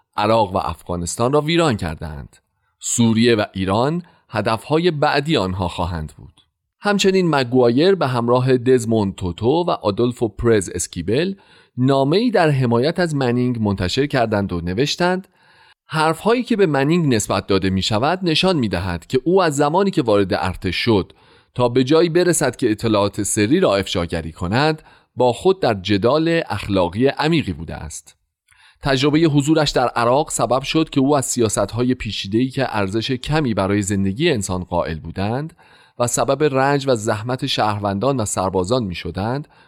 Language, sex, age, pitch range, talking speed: Persian, male, 40-59, 100-145 Hz, 150 wpm